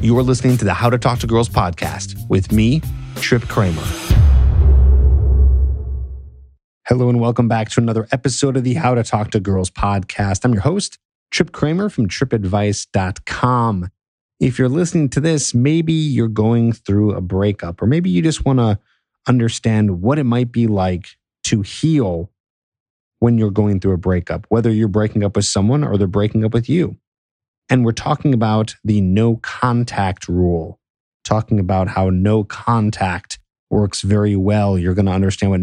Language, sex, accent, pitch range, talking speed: English, male, American, 95-120 Hz, 170 wpm